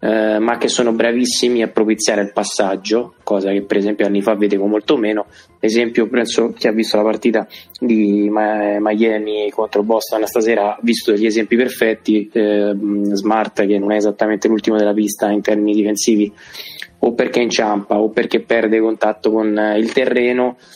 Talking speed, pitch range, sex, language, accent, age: 165 wpm, 105-115 Hz, male, Italian, native, 20-39